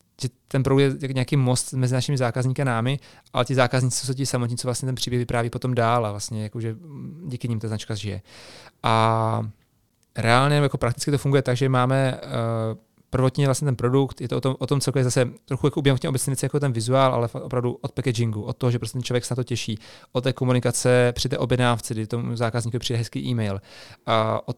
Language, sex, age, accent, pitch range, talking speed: Czech, male, 30-49, native, 115-130 Hz, 210 wpm